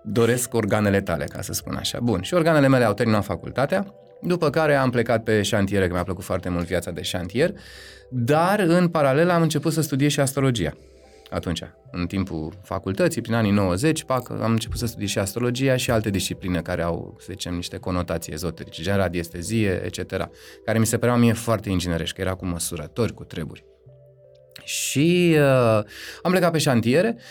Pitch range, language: 90-125 Hz, Romanian